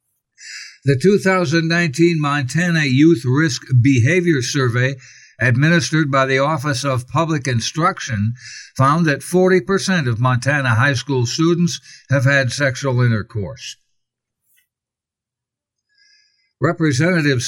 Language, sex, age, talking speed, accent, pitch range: English, male, 60-79, 95 wpm, American, 130-165 Hz